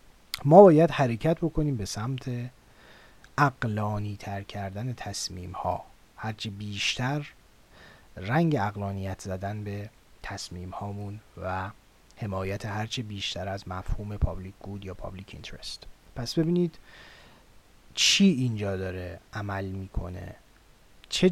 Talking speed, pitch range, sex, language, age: 105 wpm, 95-125 Hz, male, Persian, 30-49